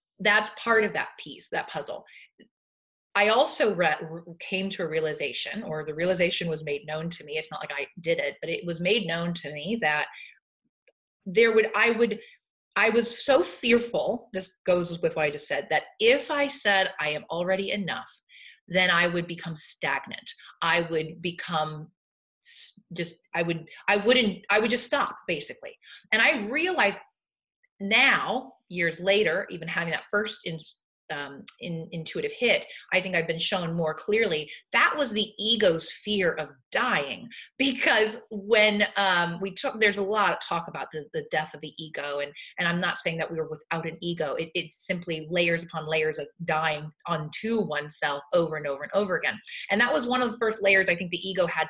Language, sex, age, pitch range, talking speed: English, female, 30-49, 160-215 Hz, 185 wpm